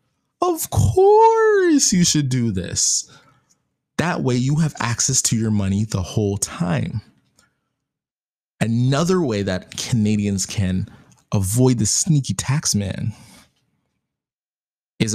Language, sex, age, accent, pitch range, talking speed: English, male, 20-39, American, 100-130 Hz, 110 wpm